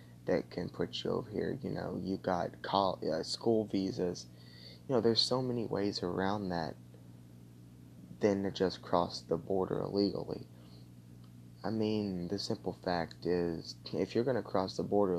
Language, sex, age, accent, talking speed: English, male, 20-39, American, 160 wpm